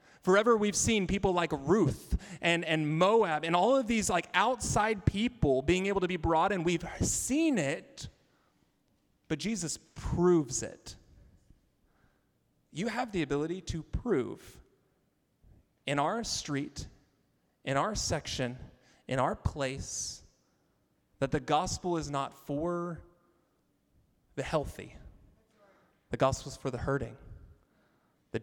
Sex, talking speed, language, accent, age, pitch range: male, 125 wpm, English, American, 30-49, 135-185 Hz